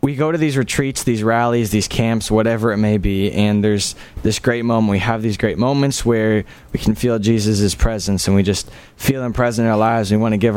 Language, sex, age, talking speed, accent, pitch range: English, male, 20-39, 240 wpm, American, 100-120 Hz